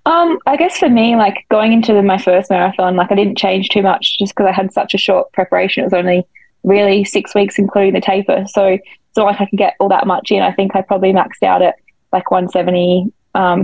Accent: Australian